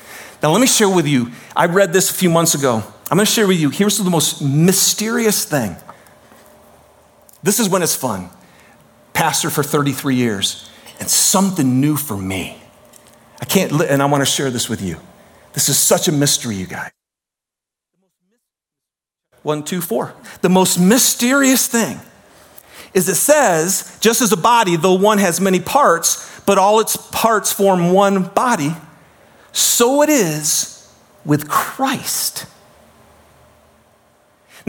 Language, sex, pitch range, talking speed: English, male, 150-230 Hz, 145 wpm